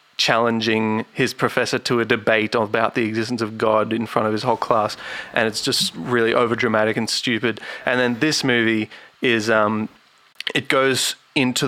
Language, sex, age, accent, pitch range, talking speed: English, male, 20-39, Australian, 110-130 Hz, 170 wpm